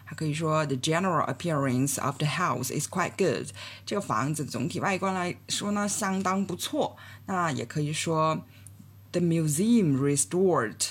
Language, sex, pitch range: Chinese, female, 125-175 Hz